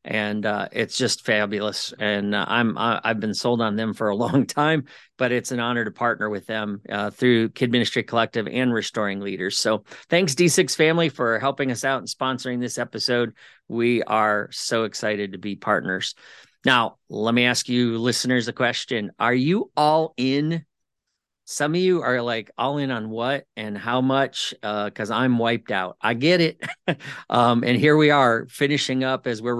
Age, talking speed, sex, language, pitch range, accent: 40-59, 195 wpm, male, English, 105-130 Hz, American